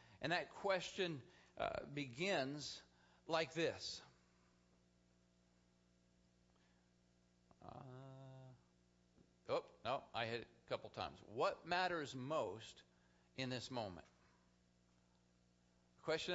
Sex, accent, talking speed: male, American, 85 wpm